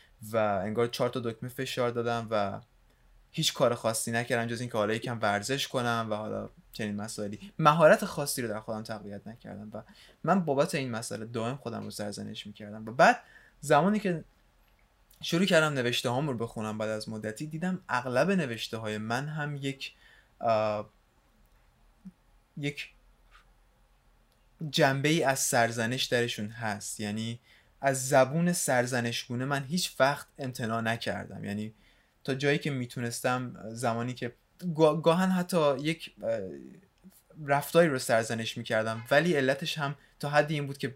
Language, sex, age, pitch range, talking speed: Persian, male, 20-39, 110-145 Hz, 140 wpm